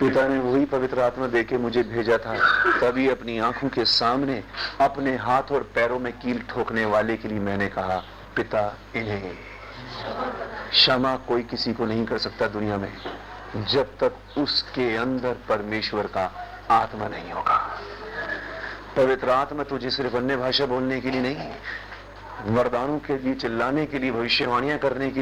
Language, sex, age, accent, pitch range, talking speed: Hindi, male, 40-59, native, 115-140 Hz, 80 wpm